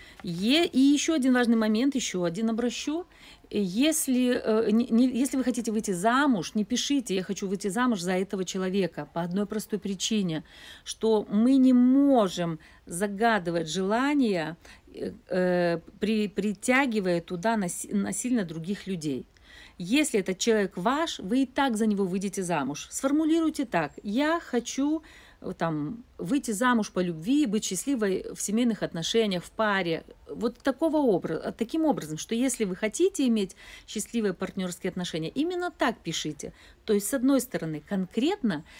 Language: Russian